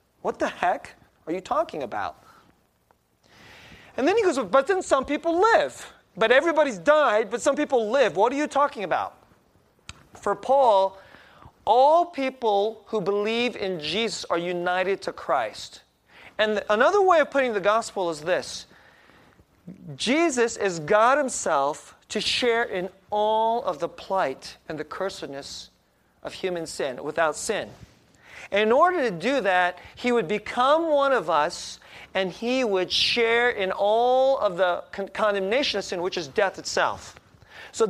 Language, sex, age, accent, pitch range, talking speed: English, male, 30-49, American, 195-270 Hz, 150 wpm